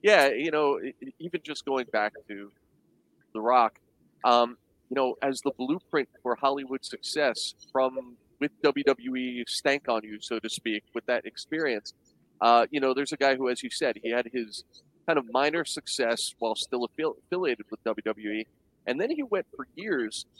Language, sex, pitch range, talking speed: English, male, 110-130 Hz, 175 wpm